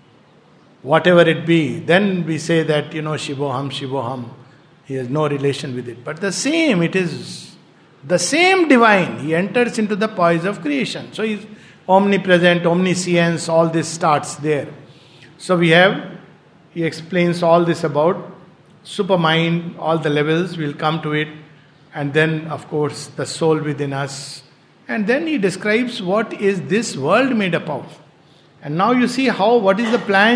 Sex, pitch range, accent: male, 160-195 Hz, Indian